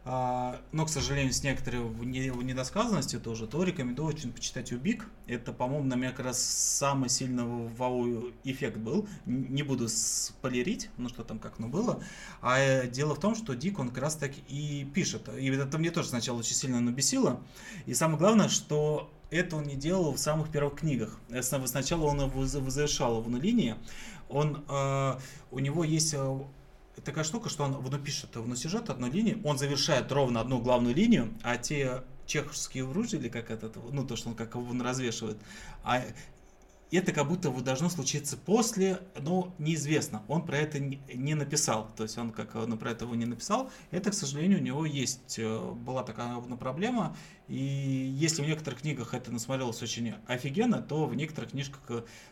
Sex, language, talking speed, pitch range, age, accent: male, Russian, 175 wpm, 120-150 Hz, 30-49, native